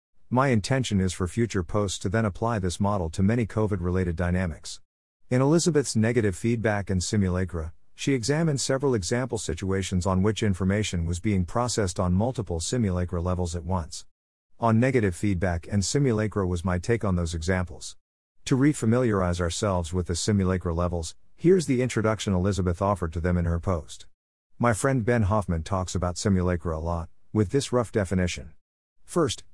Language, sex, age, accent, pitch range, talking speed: English, male, 50-69, American, 90-115 Hz, 165 wpm